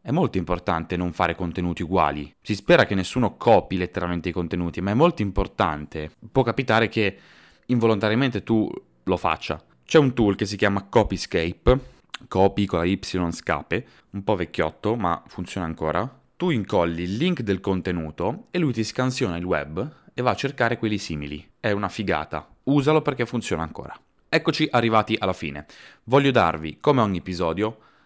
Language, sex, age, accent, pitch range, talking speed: Italian, male, 20-39, native, 85-120 Hz, 165 wpm